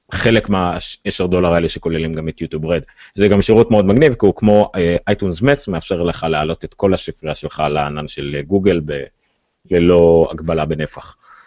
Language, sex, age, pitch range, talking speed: Hebrew, male, 30-49, 85-110 Hz, 180 wpm